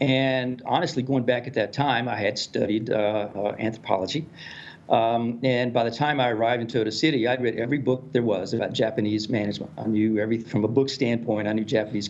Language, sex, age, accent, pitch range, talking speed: English, male, 50-69, American, 110-135 Hz, 210 wpm